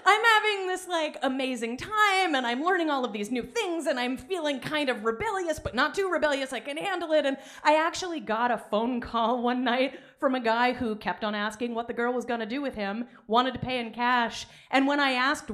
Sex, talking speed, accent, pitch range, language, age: female, 235 wpm, American, 225-325 Hz, English, 30-49